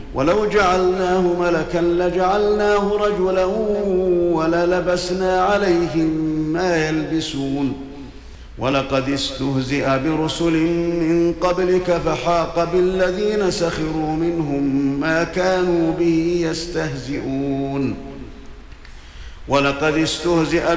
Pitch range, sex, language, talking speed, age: 140-170 Hz, male, Arabic, 70 wpm, 50-69